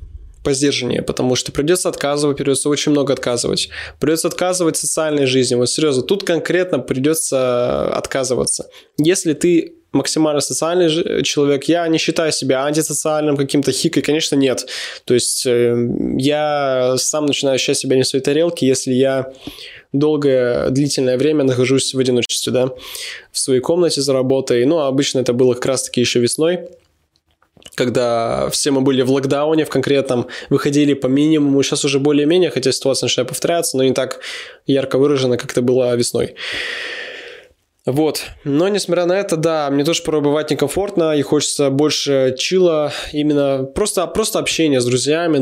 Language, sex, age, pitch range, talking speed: Russian, male, 20-39, 130-160 Hz, 150 wpm